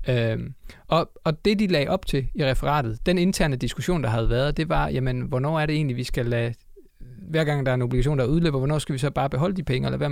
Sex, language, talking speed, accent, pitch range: male, Danish, 260 wpm, native, 125-155 Hz